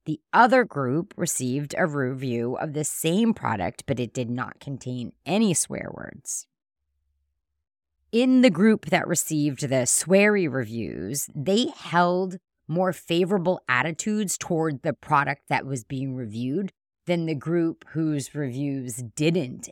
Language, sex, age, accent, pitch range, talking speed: English, female, 30-49, American, 135-195 Hz, 135 wpm